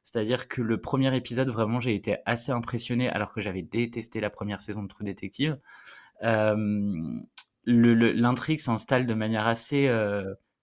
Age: 20-39